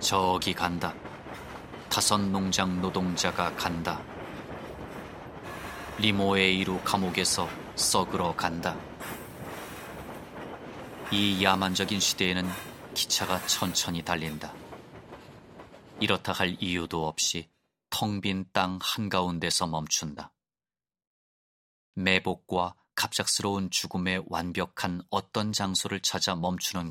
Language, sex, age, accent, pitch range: Korean, male, 30-49, native, 85-95 Hz